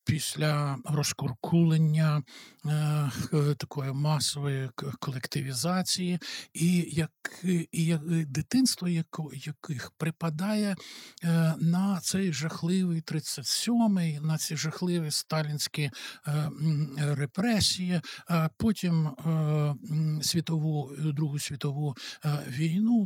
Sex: male